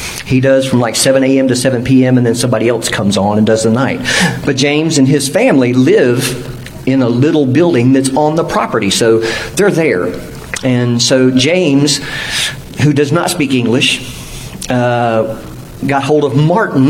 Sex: male